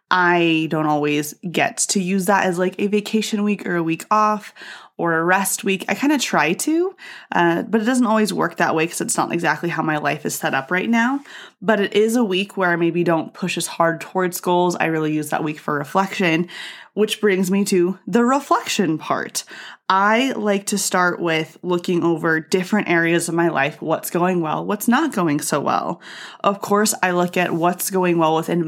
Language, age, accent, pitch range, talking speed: English, 20-39, American, 160-195 Hz, 215 wpm